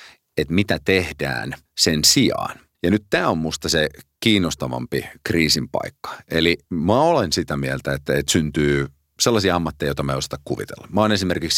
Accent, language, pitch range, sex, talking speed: native, Finnish, 70-90 Hz, male, 165 wpm